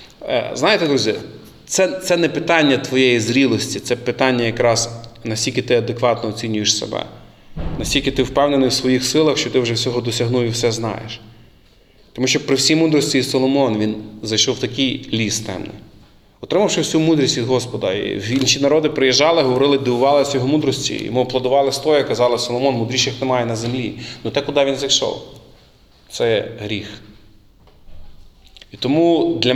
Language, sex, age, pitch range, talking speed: Ukrainian, male, 30-49, 115-140 Hz, 150 wpm